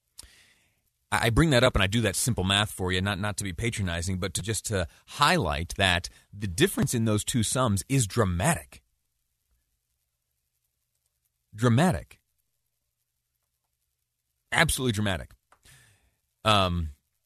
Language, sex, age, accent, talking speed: English, male, 30-49, American, 120 wpm